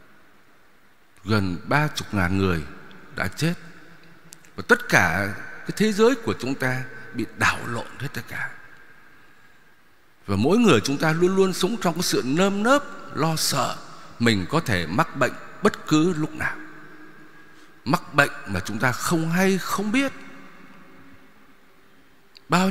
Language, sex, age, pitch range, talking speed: Vietnamese, male, 60-79, 125-210 Hz, 145 wpm